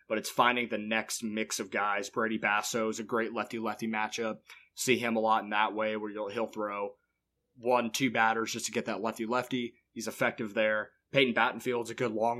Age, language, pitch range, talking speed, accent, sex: 20-39, English, 105-120 Hz, 205 wpm, American, male